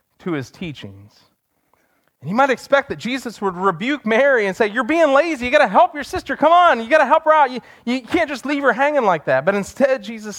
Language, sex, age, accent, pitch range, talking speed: English, male, 30-49, American, 175-250 Hz, 250 wpm